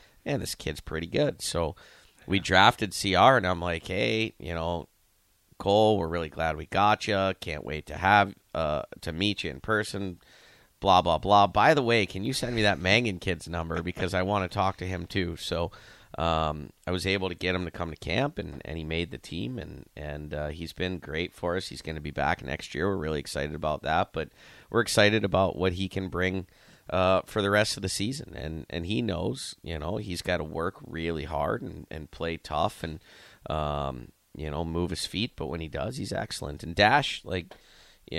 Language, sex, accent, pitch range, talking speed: English, male, American, 80-95 Hz, 220 wpm